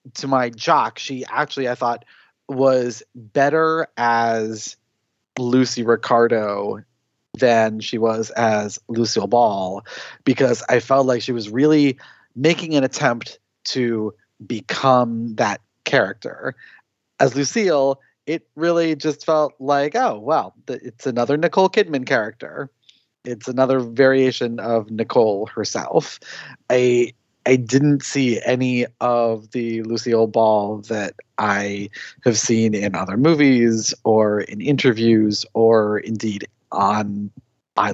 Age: 30-49